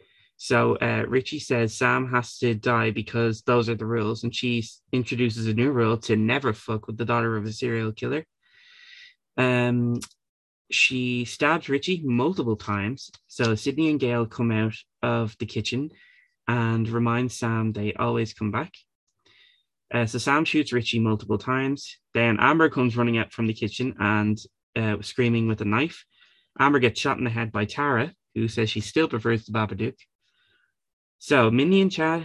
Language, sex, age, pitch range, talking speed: English, male, 20-39, 110-130 Hz, 170 wpm